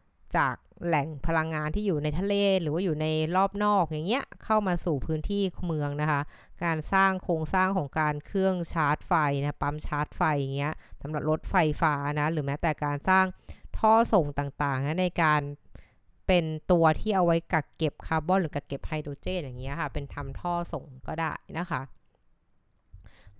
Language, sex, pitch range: Thai, female, 150-185 Hz